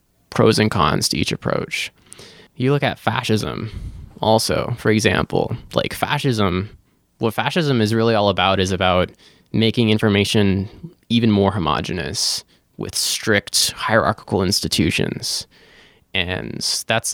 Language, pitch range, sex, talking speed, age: English, 100-125 Hz, male, 120 wpm, 20-39